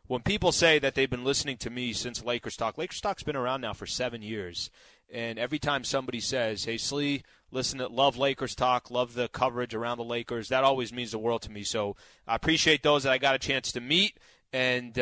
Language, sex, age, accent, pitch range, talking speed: English, male, 30-49, American, 120-145 Hz, 230 wpm